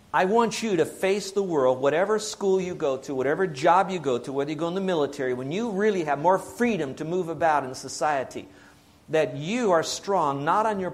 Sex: male